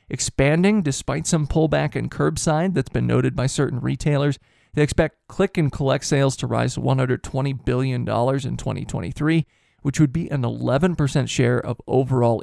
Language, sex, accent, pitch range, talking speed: English, male, American, 130-160 Hz, 160 wpm